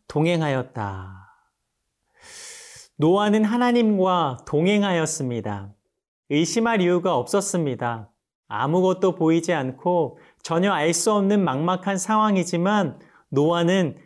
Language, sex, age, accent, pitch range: Korean, male, 40-59, native, 145-195 Hz